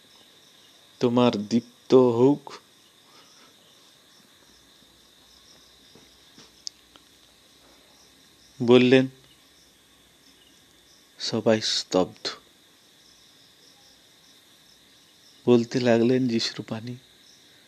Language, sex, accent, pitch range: Bengali, male, native, 125-155 Hz